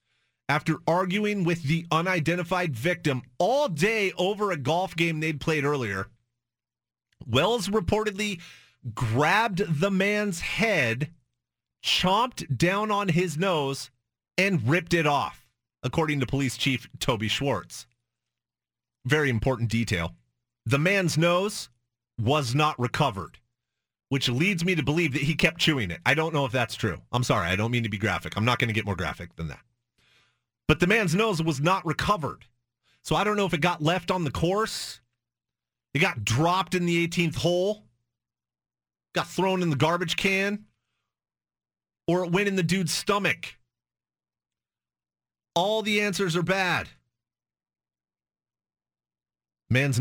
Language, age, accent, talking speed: English, 30-49, American, 145 wpm